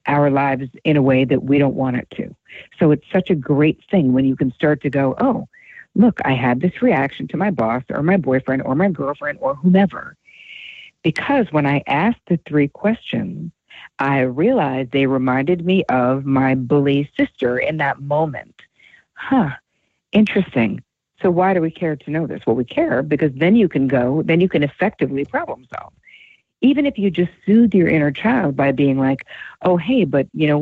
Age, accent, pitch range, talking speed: 50-69, American, 135-180 Hz, 195 wpm